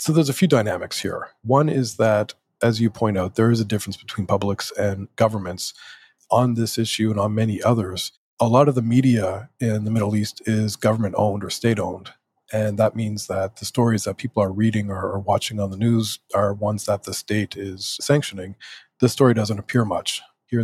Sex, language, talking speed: male, English, 200 wpm